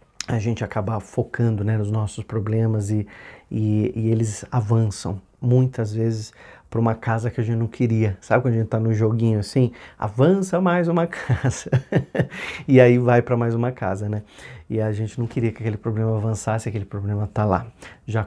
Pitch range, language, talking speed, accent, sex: 110-130 Hz, Portuguese, 185 wpm, Brazilian, male